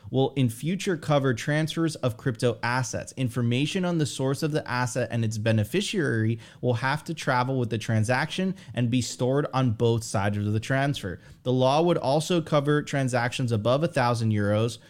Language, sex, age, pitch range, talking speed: English, male, 30-49, 115-145 Hz, 175 wpm